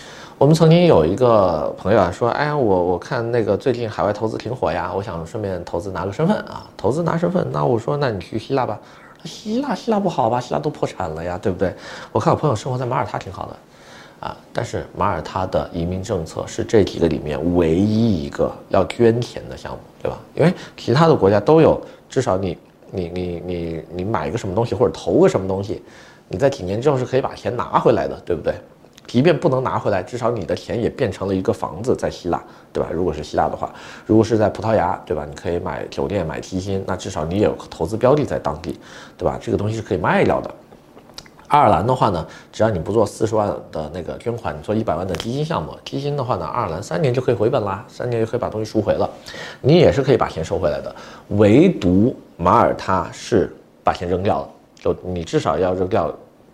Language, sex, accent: Chinese, male, native